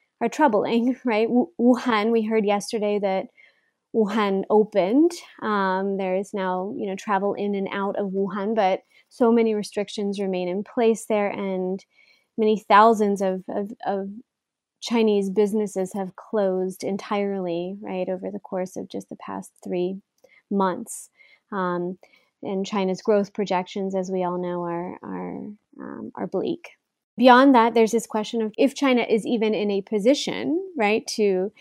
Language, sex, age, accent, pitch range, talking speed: English, female, 30-49, American, 190-225 Hz, 150 wpm